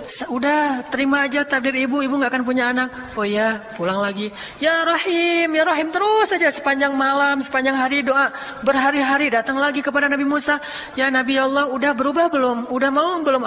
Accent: native